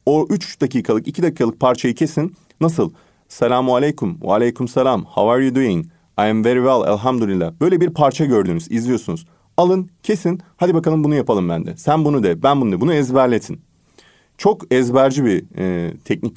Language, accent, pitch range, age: Turkish, native, 110-160 Hz, 40-59